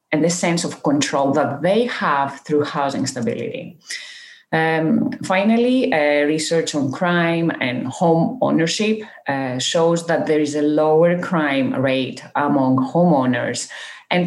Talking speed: 135 wpm